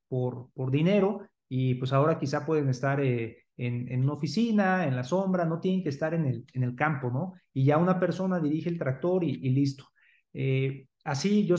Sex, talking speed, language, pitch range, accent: male, 200 wpm, Spanish, 135-175 Hz, Mexican